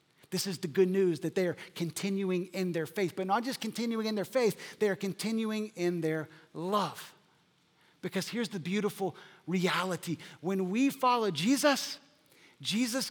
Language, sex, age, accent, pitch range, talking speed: English, male, 50-69, American, 180-250 Hz, 160 wpm